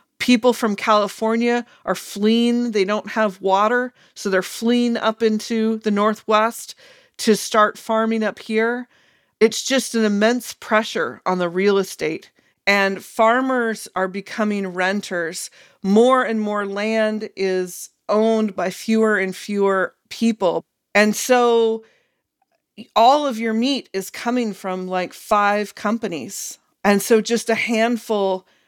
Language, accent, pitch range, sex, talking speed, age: English, American, 195-235 Hz, female, 135 wpm, 40-59